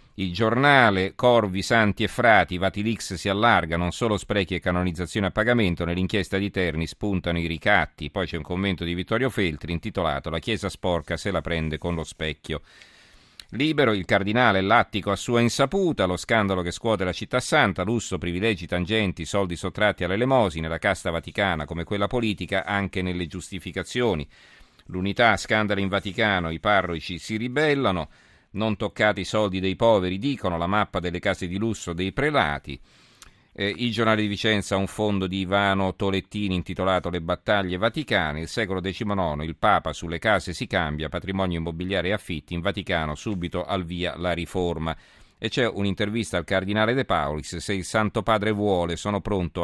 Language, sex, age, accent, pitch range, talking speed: Italian, male, 40-59, native, 85-105 Hz, 170 wpm